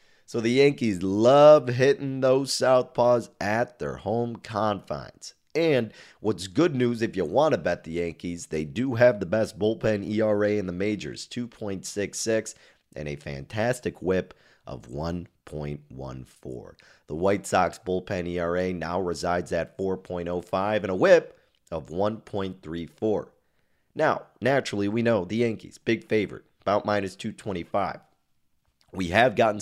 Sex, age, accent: male, 30-49, American